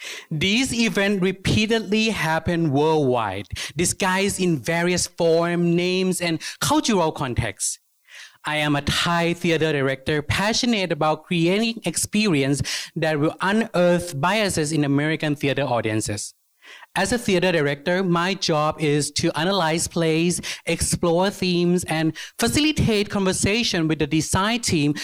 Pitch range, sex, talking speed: 150-195 Hz, male, 120 wpm